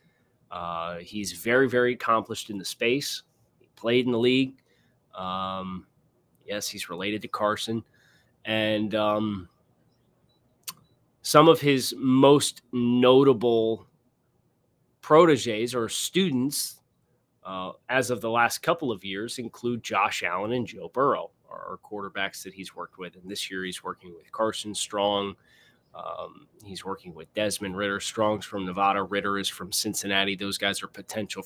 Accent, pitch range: American, 100-125 Hz